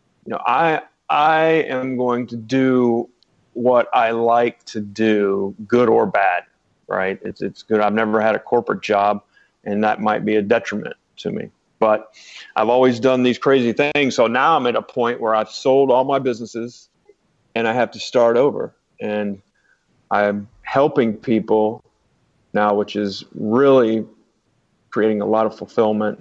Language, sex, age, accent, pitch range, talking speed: English, male, 40-59, American, 110-125 Hz, 165 wpm